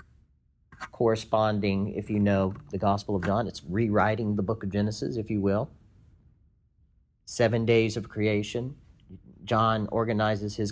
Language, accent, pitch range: English, American, 105-130 Hz